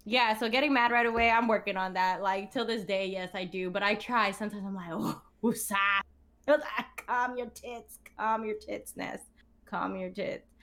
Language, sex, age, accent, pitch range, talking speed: English, female, 10-29, American, 170-210 Hz, 200 wpm